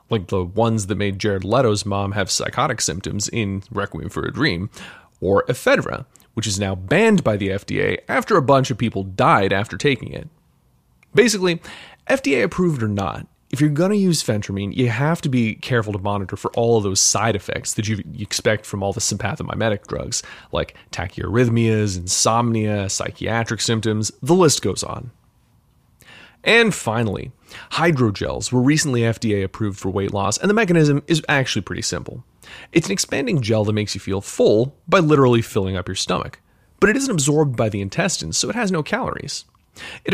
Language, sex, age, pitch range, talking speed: English, male, 30-49, 100-140 Hz, 180 wpm